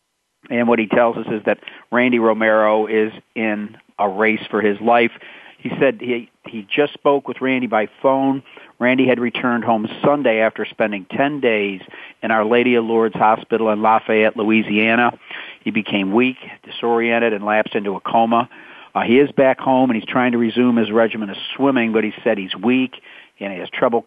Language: English